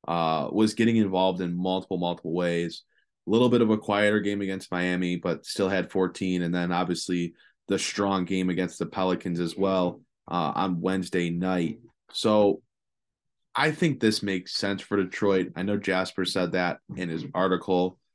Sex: male